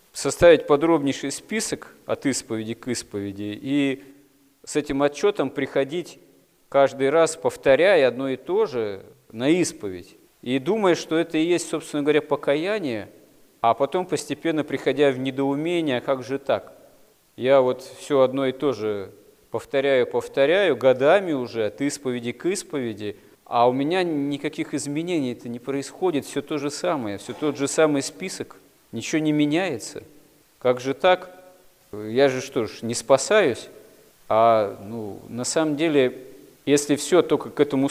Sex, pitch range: male, 125-155 Hz